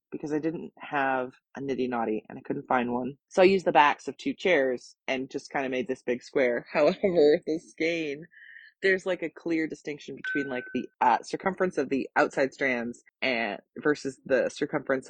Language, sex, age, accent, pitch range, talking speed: English, female, 20-39, American, 130-170 Hz, 195 wpm